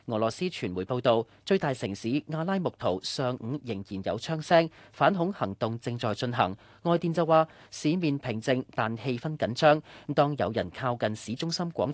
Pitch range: 110-160 Hz